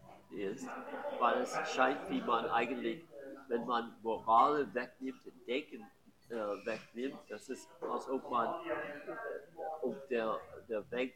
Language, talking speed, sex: German, 130 wpm, male